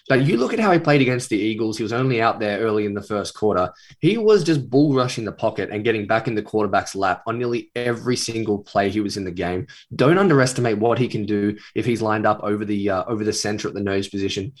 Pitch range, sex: 100-120 Hz, male